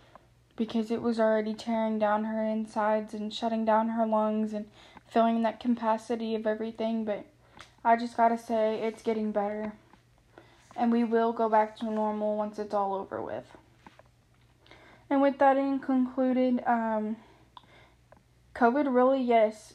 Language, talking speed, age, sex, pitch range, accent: English, 145 wpm, 10-29, female, 215-245 Hz, American